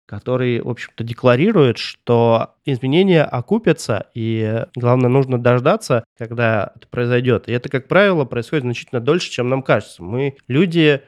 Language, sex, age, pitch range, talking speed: Russian, male, 20-39, 115-140 Hz, 140 wpm